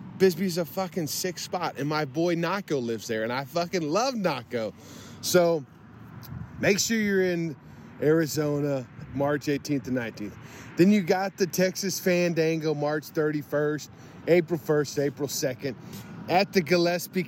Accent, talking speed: American, 140 wpm